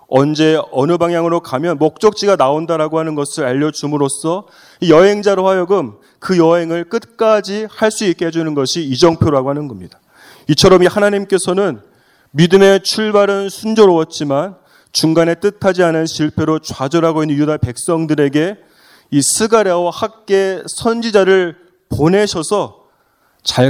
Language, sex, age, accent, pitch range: Korean, male, 30-49, native, 155-195 Hz